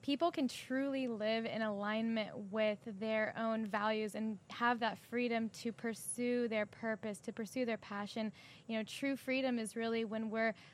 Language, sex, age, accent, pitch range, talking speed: English, female, 10-29, American, 210-235 Hz, 170 wpm